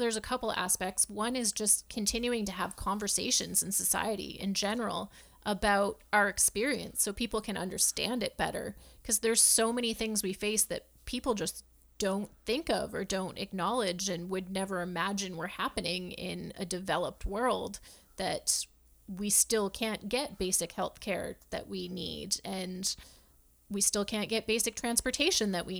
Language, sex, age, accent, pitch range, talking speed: English, female, 30-49, American, 185-220 Hz, 165 wpm